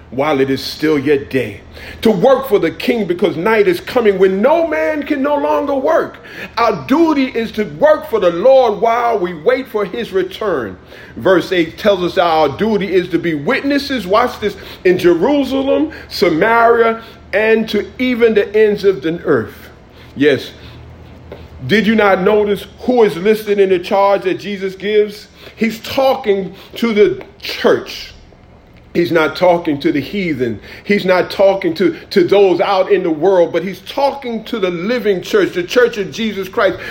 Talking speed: 170 wpm